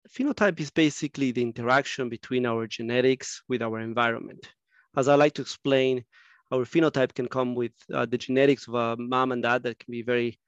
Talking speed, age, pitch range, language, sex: 190 wpm, 30-49, 120-145 Hz, English, male